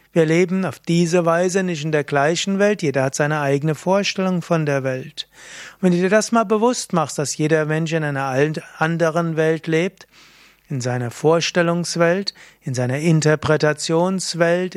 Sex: male